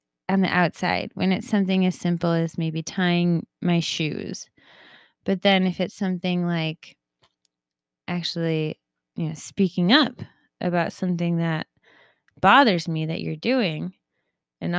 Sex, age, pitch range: female, 20-39, 170-230 Hz